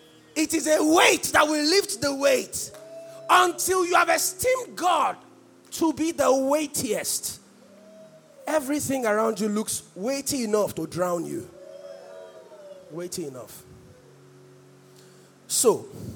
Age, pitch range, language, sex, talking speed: 30-49, 280-410 Hz, English, male, 110 wpm